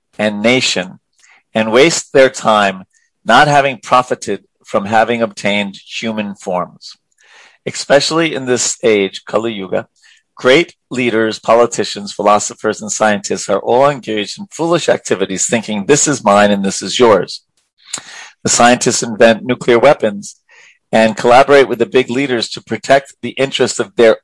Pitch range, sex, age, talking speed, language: 105-135 Hz, male, 40-59, 140 wpm, English